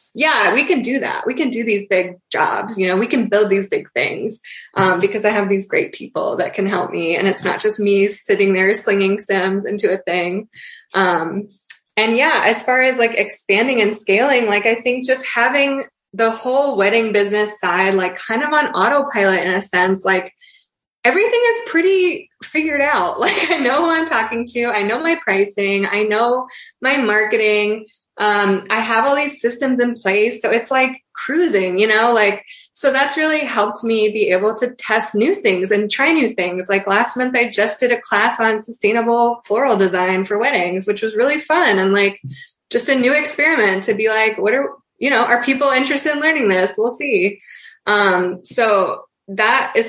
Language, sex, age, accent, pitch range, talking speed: English, female, 20-39, American, 200-255 Hz, 195 wpm